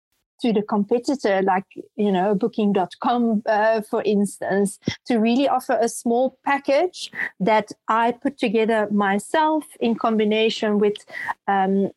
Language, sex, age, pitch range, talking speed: English, female, 40-59, 205-235 Hz, 120 wpm